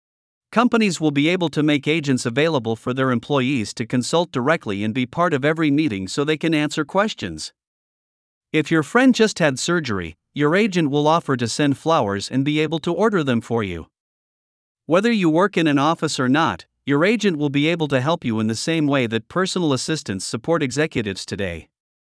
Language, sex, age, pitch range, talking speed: Vietnamese, male, 50-69, 125-165 Hz, 195 wpm